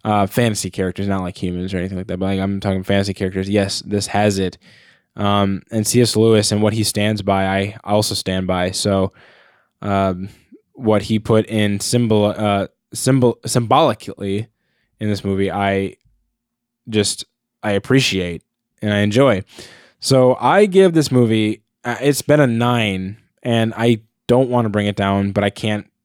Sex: male